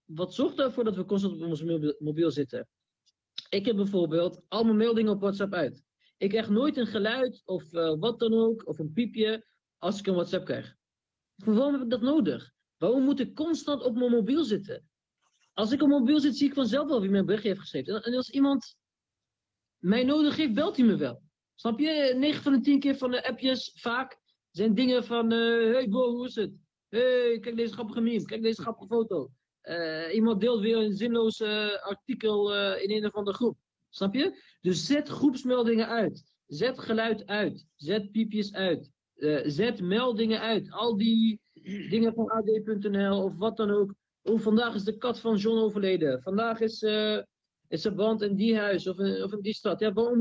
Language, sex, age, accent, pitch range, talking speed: Dutch, male, 40-59, Dutch, 195-245 Hz, 200 wpm